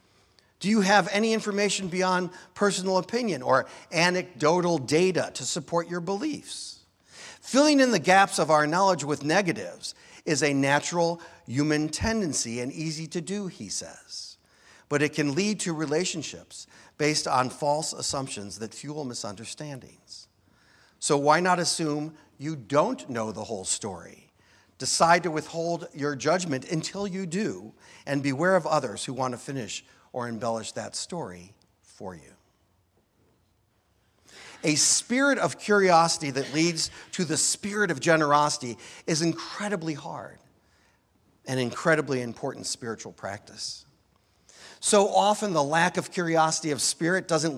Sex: male